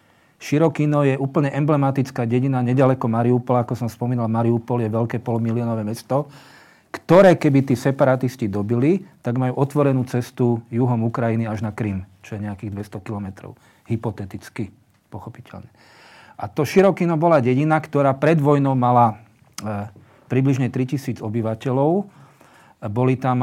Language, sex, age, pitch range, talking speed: Slovak, male, 40-59, 115-140 Hz, 130 wpm